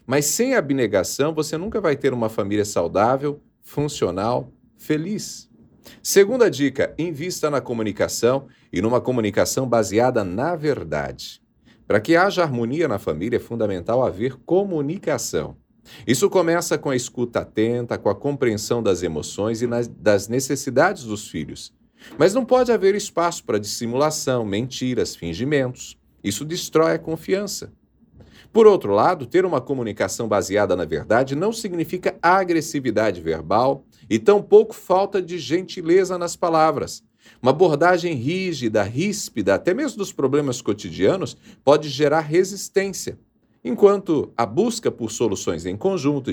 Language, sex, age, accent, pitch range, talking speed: Portuguese, male, 40-59, Brazilian, 125-185 Hz, 130 wpm